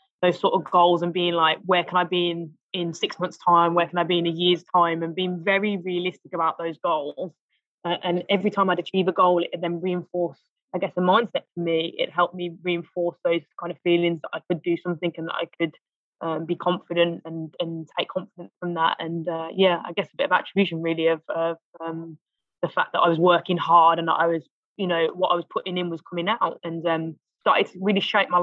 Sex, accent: female, British